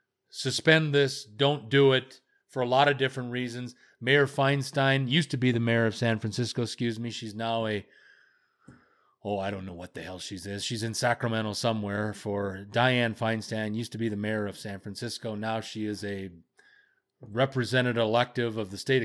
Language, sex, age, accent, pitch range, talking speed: English, male, 30-49, American, 110-125 Hz, 185 wpm